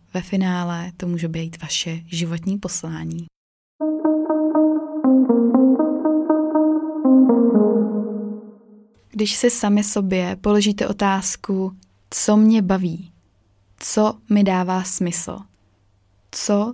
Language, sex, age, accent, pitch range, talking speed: Czech, female, 20-39, native, 175-205 Hz, 80 wpm